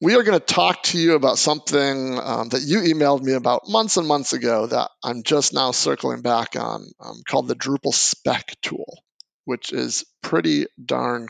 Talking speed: 190 wpm